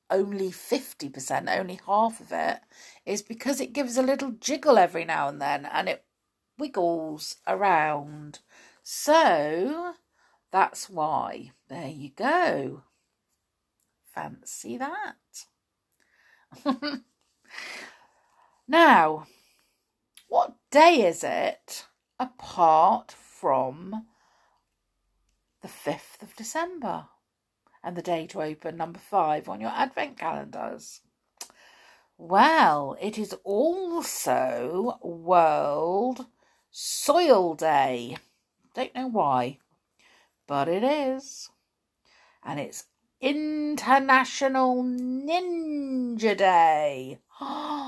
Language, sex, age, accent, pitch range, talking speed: English, female, 40-59, British, 170-285 Hz, 85 wpm